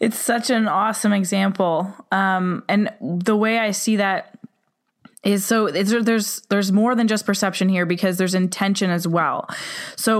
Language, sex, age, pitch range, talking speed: English, female, 20-39, 190-225 Hz, 160 wpm